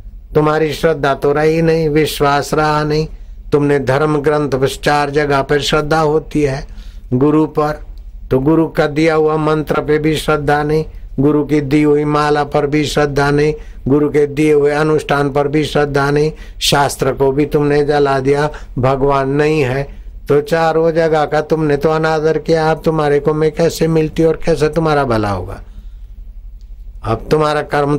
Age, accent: 60-79, native